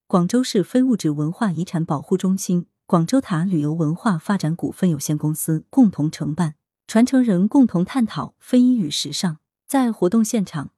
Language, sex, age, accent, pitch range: Chinese, female, 20-39, native, 155-225 Hz